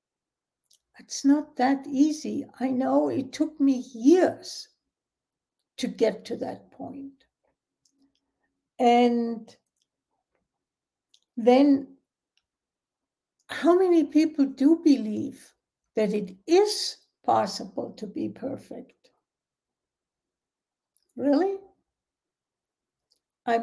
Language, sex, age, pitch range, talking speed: English, female, 60-79, 235-275 Hz, 80 wpm